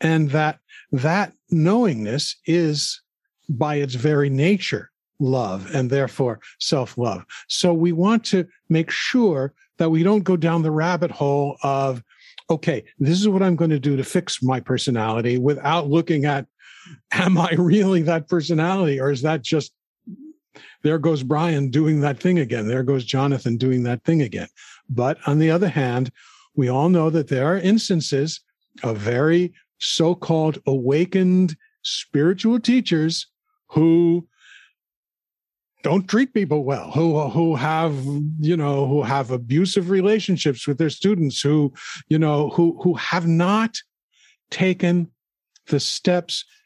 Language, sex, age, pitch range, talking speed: English, male, 50-69, 140-180 Hz, 145 wpm